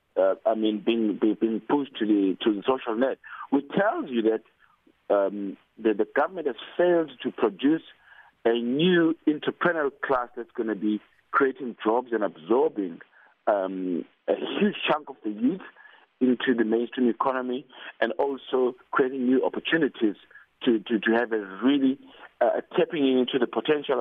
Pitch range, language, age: 110-135 Hz, English, 50-69